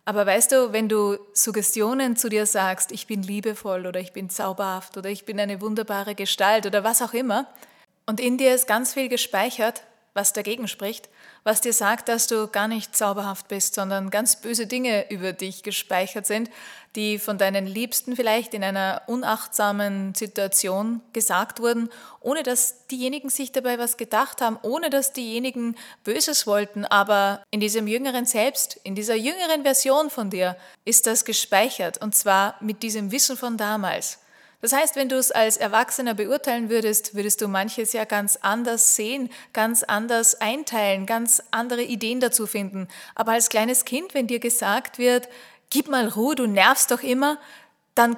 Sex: female